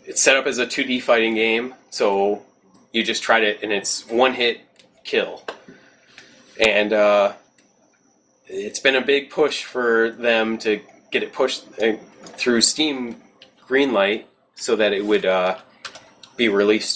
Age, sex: 20-39, male